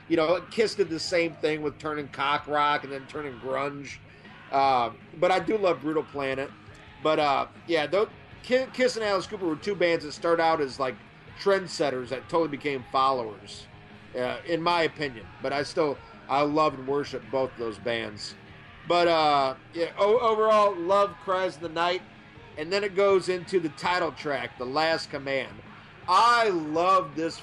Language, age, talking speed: English, 40-59, 175 wpm